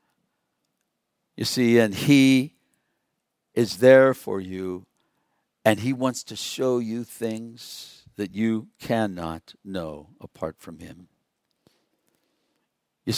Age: 60-79